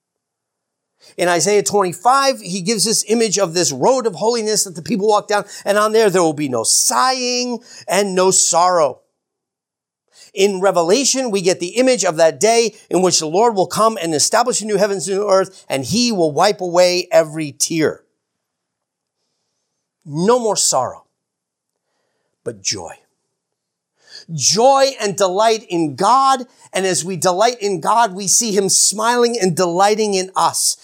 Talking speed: 160 wpm